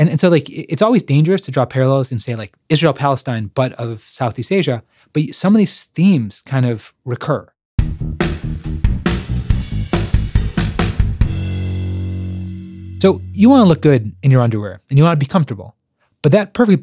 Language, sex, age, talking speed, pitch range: English, male, 30-49, 155 wpm, 125-150 Hz